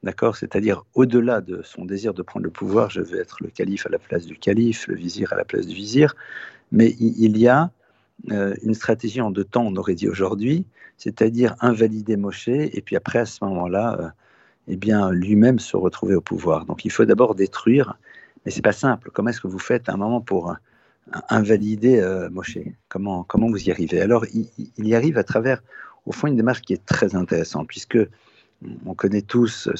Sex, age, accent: male, 50-69, French